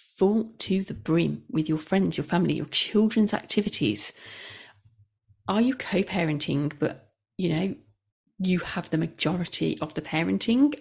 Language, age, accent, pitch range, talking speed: English, 40-59, British, 165-220 Hz, 140 wpm